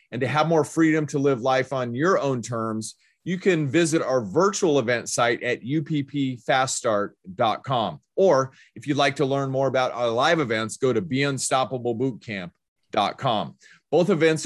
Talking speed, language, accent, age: 155 wpm, English, American, 30-49